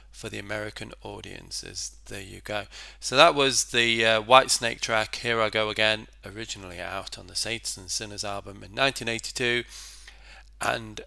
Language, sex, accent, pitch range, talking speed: English, male, British, 100-115 Hz, 165 wpm